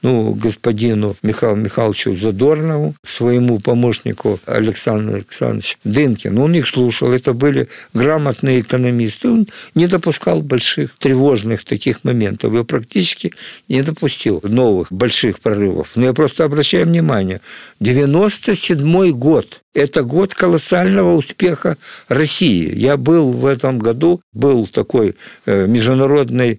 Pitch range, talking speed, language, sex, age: 115-155 Hz, 115 wpm, Russian, male, 50-69